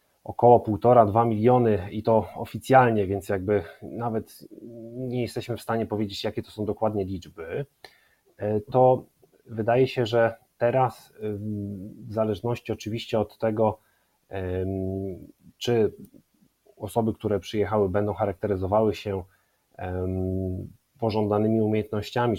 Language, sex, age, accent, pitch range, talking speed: Polish, male, 30-49, native, 100-115 Hz, 100 wpm